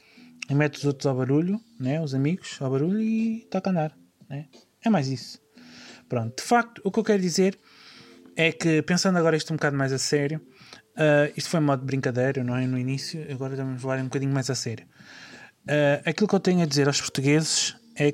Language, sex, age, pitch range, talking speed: Portuguese, male, 20-39, 135-185 Hz, 215 wpm